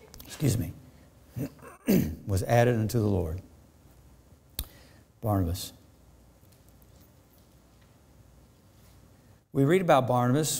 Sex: male